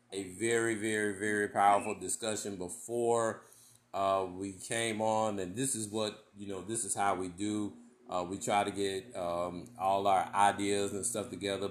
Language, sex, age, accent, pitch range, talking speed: English, male, 30-49, American, 105-125 Hz, 175 wpm